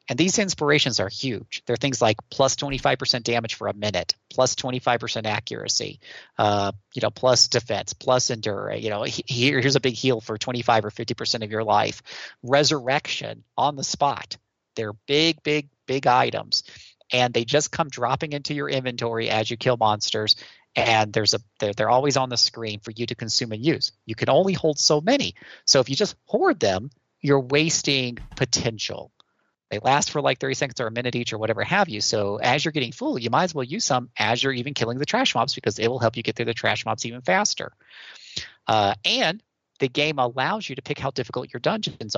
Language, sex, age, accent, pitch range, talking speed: English, male, 40-59, American, 115-145 Hz, 210 wpm